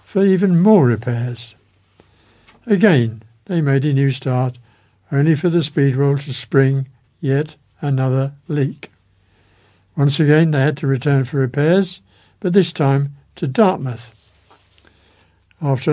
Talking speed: 125 wpm